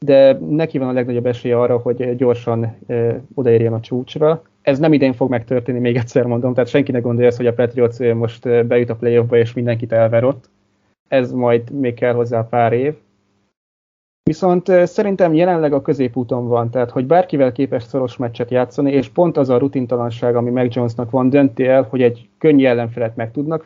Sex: male